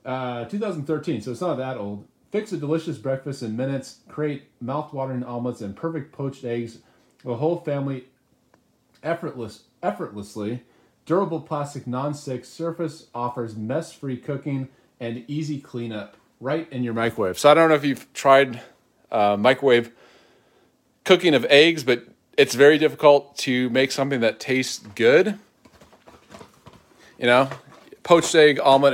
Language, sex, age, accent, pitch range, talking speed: English, male, 30-49, American, 120-145 Hz, 135 wpm